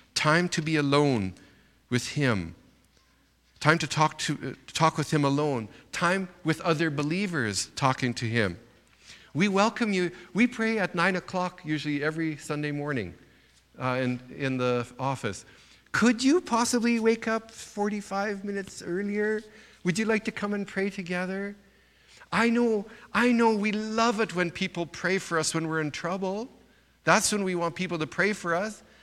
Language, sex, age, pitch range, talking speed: English, male, 50-69, 115-190 Hz, 165 wpm